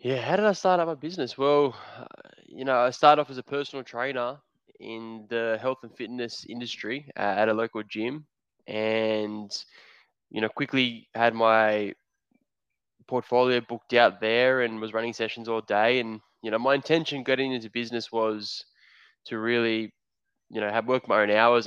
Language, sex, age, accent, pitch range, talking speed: English, male, 10-29, Australian, 105-120 Hz, 170 wpm